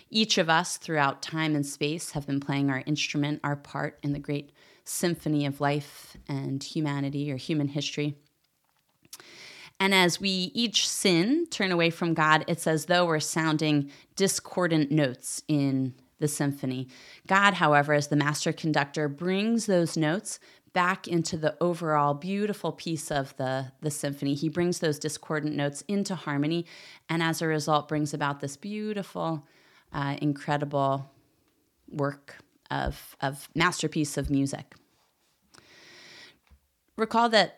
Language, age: English, 30-49